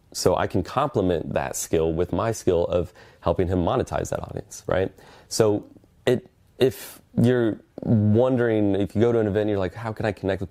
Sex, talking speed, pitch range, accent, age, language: male, 200 wpm, 90-105 Hz, American, 30-49, English